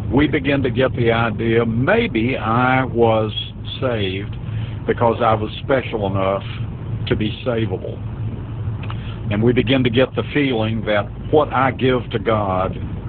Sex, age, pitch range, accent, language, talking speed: male, 60-79, 110-125 Hz, American, English, 140 wpm